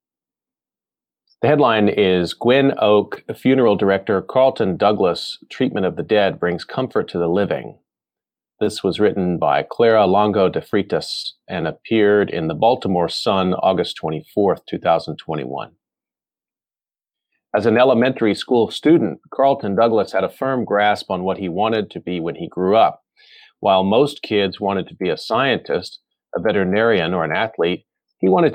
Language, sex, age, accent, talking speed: English, male, 40-59, American, 150 wpm